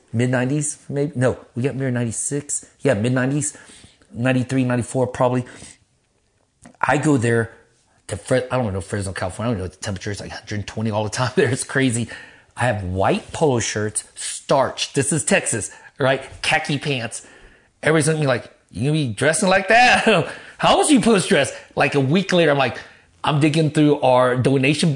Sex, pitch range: male, 115-175 Hz